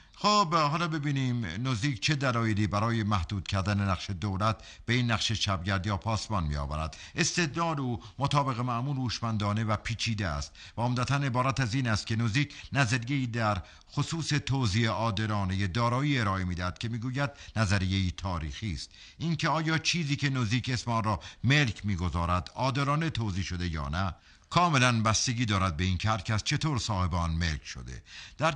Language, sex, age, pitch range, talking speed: Persian, male, 50-69, 95-135 Hz, 160 wpm